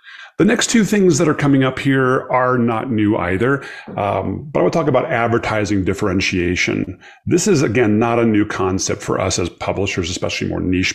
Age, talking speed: 30-49, 190 wpm